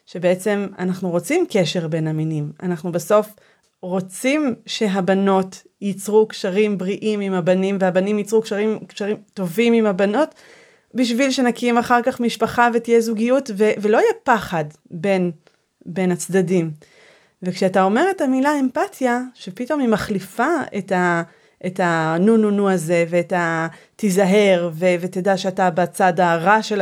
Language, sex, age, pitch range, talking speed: Hebrew, female, 30-49, 170-215 Hz, 135 wpm